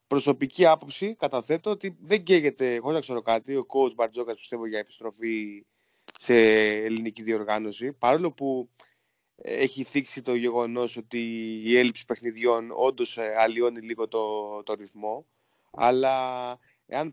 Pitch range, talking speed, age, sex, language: 115-150 Hz, 130 wpm, 20-39, male, Greek